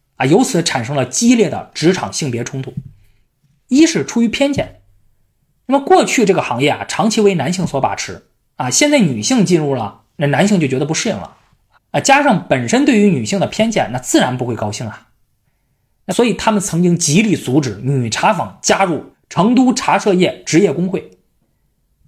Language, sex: Chinese, male